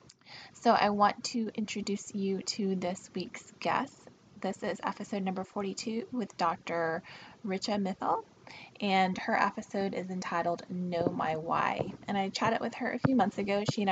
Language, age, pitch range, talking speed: English, 20-39, 180-215 Hz, 165 wpm